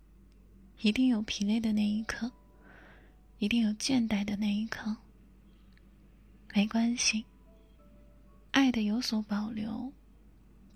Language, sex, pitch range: Chinese, female, 205-240 Hz